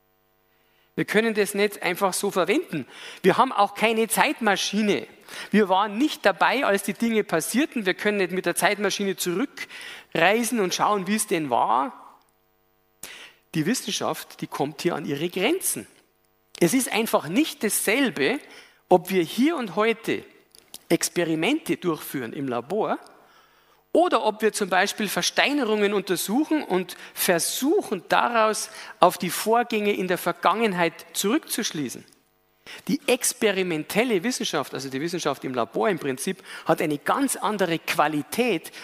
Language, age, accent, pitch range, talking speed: German, 50-69, German, 170-225 Hz, 135 wpm